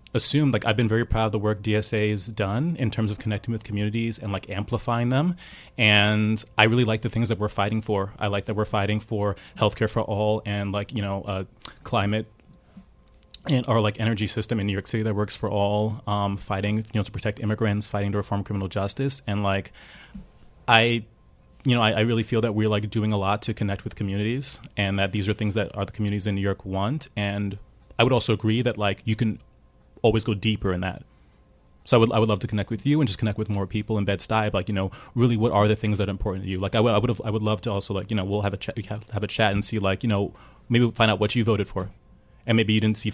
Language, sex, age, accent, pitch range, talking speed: English, male, 30-49, American, 100-115 Hz, 260 wpm